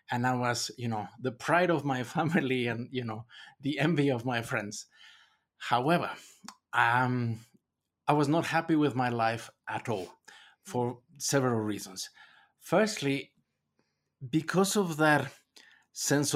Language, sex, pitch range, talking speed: English, male, 120-150 Hz, 135 wpm